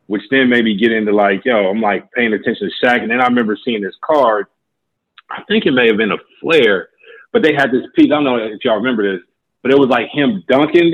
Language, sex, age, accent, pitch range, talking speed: English, male, 30-49, American, 100-130 Hz, 260 wpm